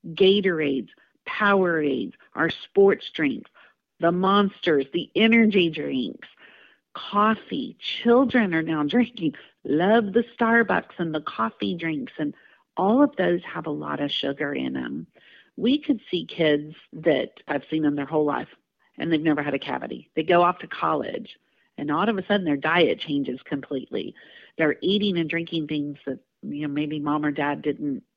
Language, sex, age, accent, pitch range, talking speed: English, female, 50-69, American, 150-215 Hz, 165 wpm